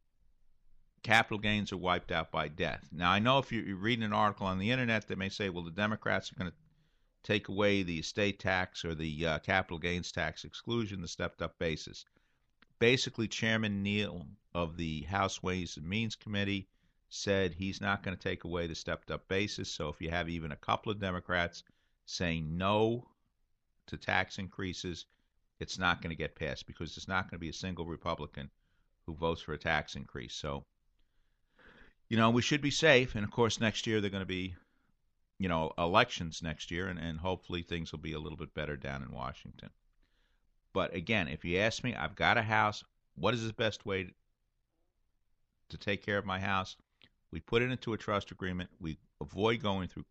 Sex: male